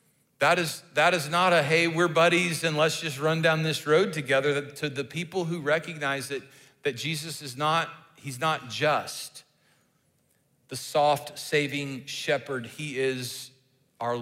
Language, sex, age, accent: English, male, 40-59, American